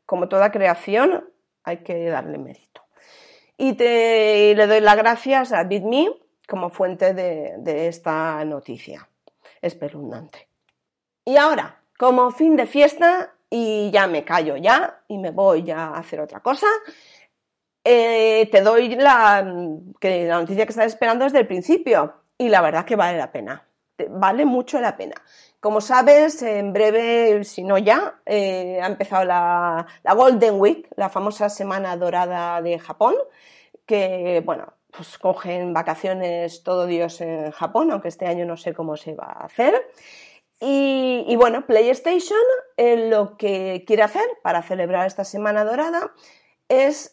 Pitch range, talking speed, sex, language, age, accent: 180-250 Hz, 155 wpm, female, Spanish, 30-49, Spanish